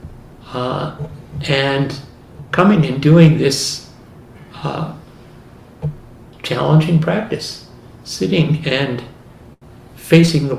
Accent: American